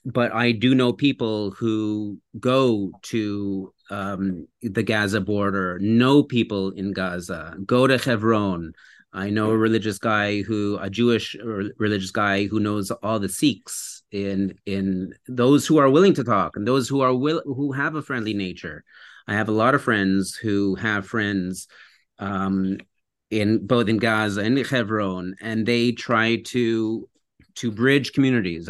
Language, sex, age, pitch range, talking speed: English, male, 30-49, 100-120 Hz, 155 wpm